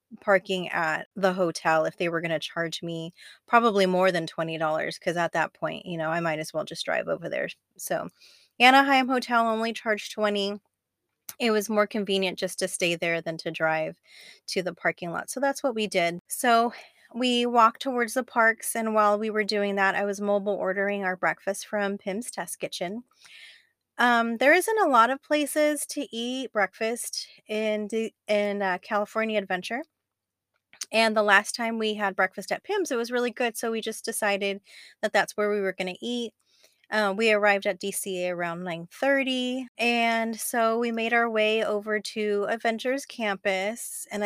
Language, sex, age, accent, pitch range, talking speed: English, female, 20-39, American, 185-230 Hz, 185 wpm